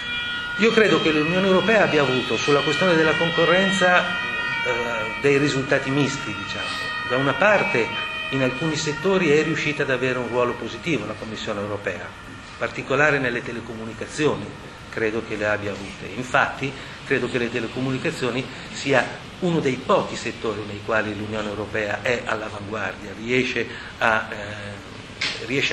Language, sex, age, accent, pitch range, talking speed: Italian, male, 40-59, native, 105-135 Hz, 140 wpm